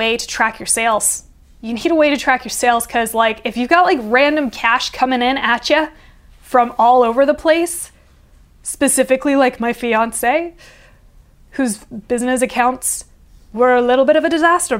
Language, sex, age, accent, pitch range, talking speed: English, female, 20-39, American, 230-295 Hz, 175 wpm